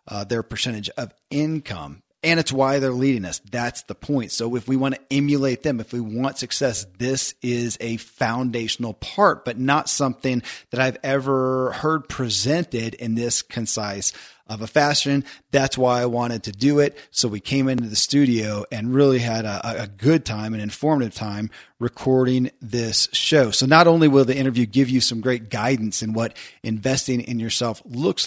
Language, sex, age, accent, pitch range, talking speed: English, male, 30-49, American, 115-135 Hz, 185 wpm